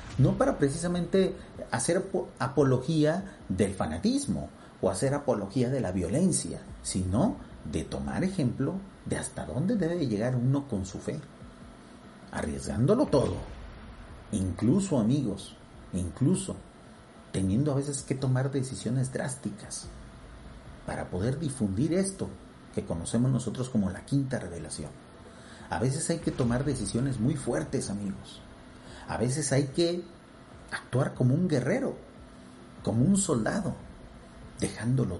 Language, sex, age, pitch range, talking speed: Spanish, male, 40-59, 100-145 Hz, 120 wpm